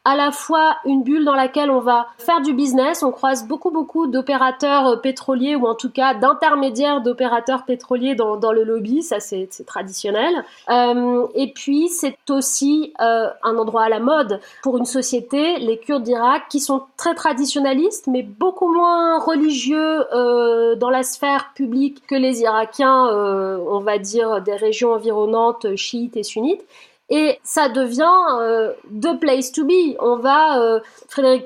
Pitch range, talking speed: 230-290 Hz, 155 wpm